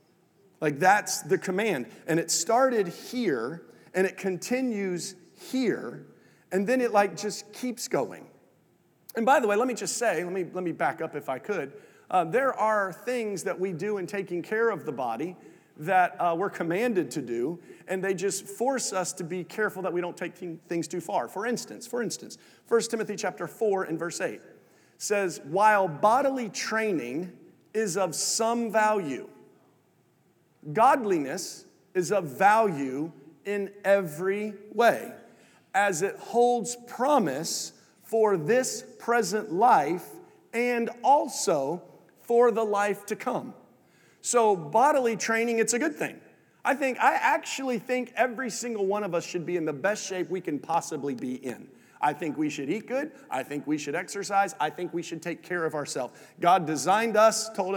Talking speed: 170 wpm